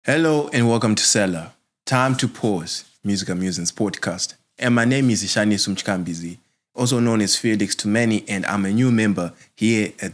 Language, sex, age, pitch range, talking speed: English, male, 20-39, 90-115 Hz, 170 wpm